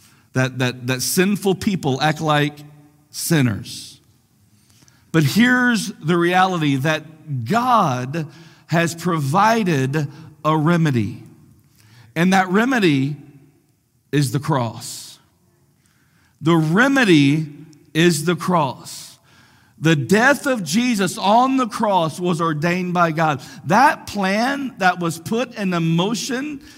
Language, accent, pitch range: English, American, 145-200 Hz